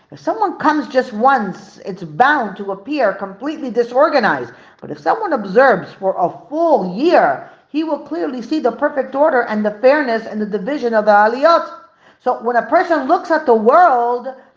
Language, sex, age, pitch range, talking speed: English, female, 40-59, 210-290 Hz, 175 wpm